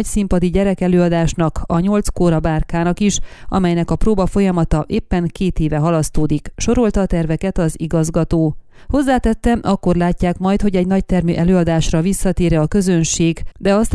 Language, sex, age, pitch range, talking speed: Hungarian, female, 30-49, 170-195 Hz, 150 wpm